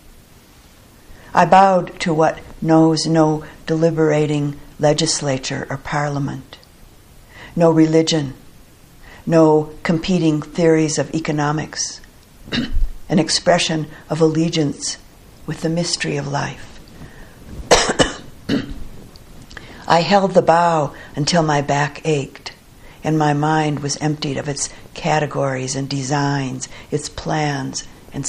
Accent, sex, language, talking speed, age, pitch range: American, female, English, 100 wpm, 60-79, 145-165 Hz